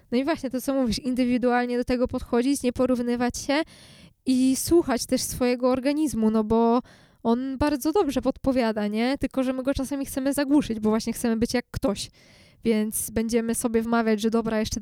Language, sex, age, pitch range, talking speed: Polish, female, 20-39, 230-265 Hz, 180 wpm